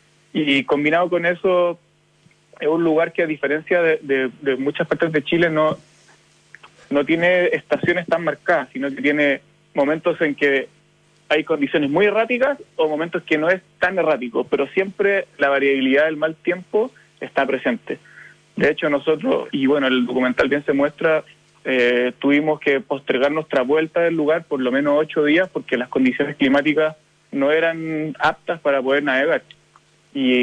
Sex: male